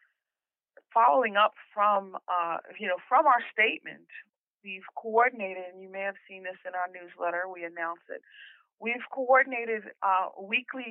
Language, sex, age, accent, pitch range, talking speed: English, female, 40-59, American, 185-245 Hz, 150 wpm